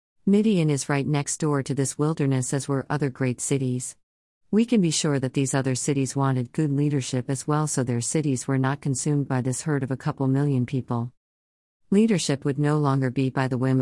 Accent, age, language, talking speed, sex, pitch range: American, 40-59, English, 210 wpm, female, 130-150 Hz